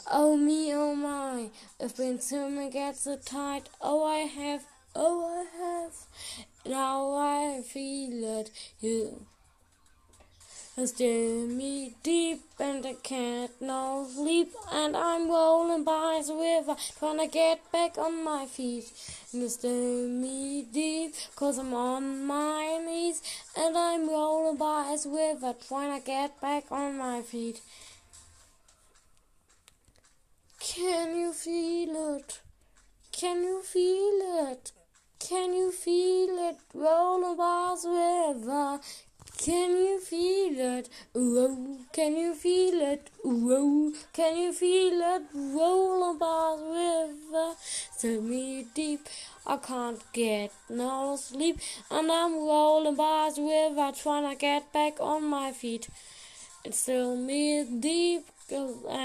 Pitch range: 260-330 Hz